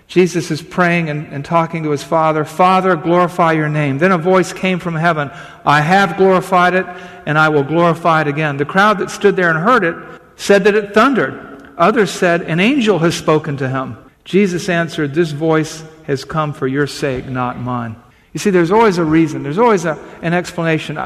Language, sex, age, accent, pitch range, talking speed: English, male, 50-69, American, 150-185 Hz, 200 wpm